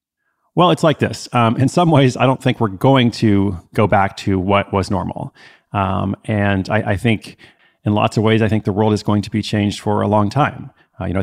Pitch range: 100-120 Hz